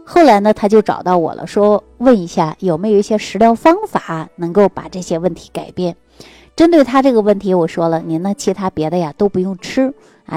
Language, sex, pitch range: Chinese, female, 165-225 Hz